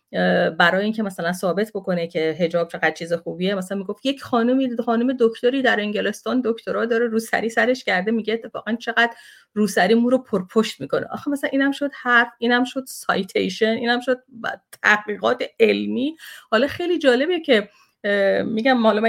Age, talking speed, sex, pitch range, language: 30-49, 155 wpm, female, 210-260 Hz, Persian